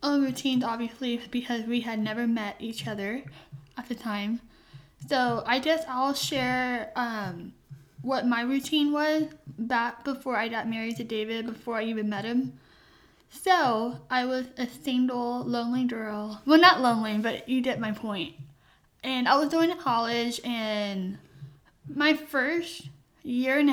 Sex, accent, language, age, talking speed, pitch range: female, American, English, 10-29, 155 wpm, 225-270 Hz